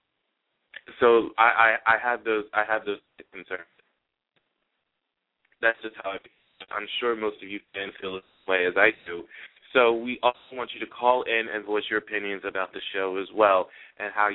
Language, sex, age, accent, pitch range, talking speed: English, male, 20-39, American, 100-115 Hz, 190 wpm